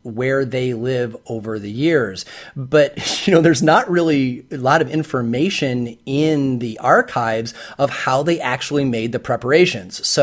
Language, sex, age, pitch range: English, male, 30-49, 130-160 Hz